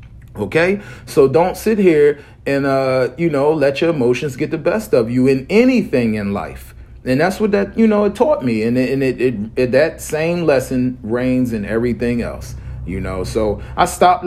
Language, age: English, 40-59